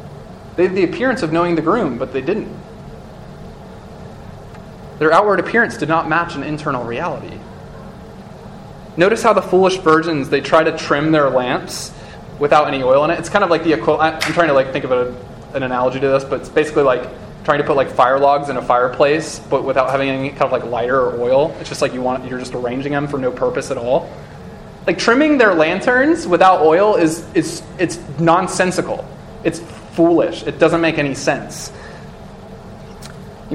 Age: 20-39